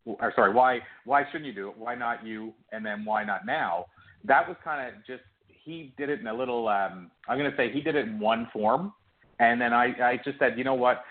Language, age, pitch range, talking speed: English, 40-59, 105-125 Hz, 255 wpm